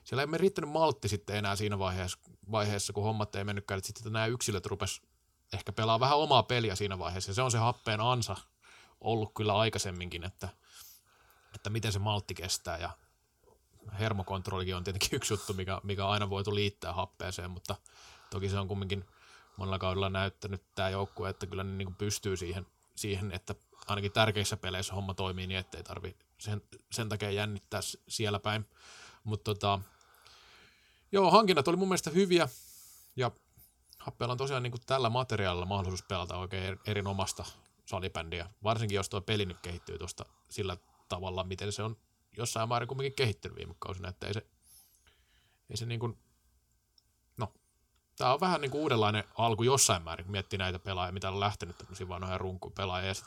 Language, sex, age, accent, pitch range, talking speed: Finnish, male, 20-39, native, 95-110 Hz, 170 wpm